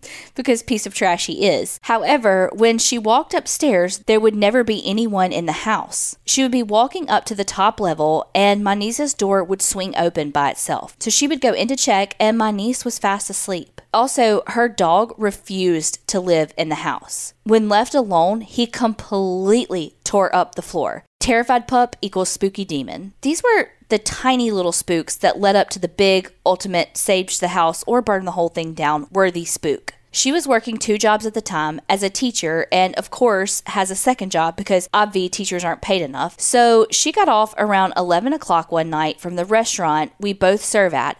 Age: 20-39